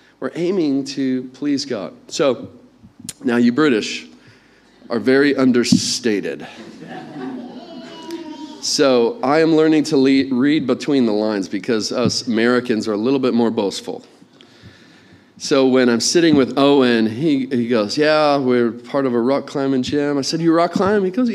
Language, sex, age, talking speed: English, male, 40-59, 155 wpm